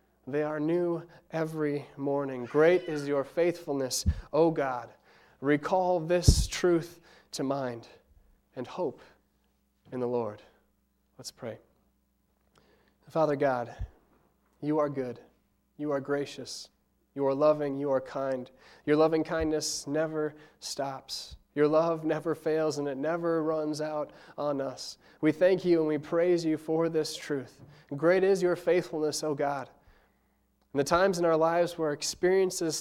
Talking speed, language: 140 wpm, English